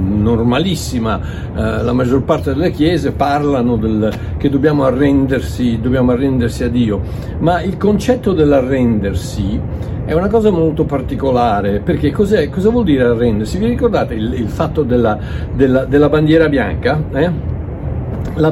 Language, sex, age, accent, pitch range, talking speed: Italian, male, 60-79, native, 115-155 Hz, 140 wpm